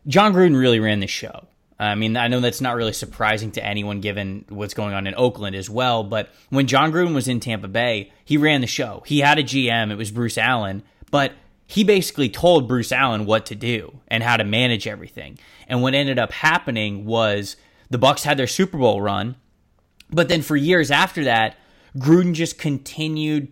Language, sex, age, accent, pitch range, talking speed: English, male, 20-39, American, 115-145 Hz, 205 wpm